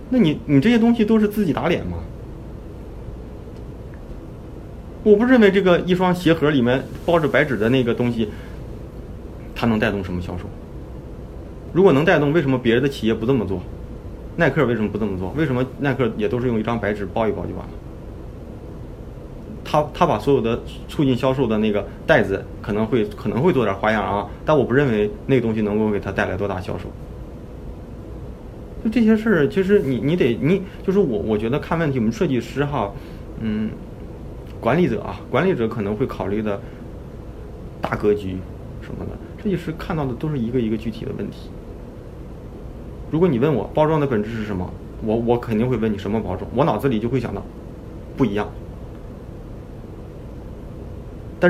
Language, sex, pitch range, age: Chinese, male, 105-140 Hz, 20-39